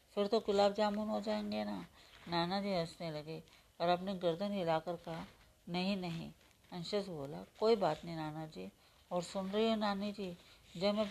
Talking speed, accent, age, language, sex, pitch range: 180 wpm, native, 40-59, Hindi, female, 170-210 Hz